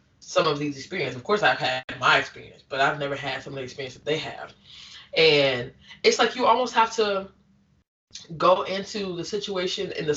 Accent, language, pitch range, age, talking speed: American, English, 135-170 Hz, 20-39, 200 wpm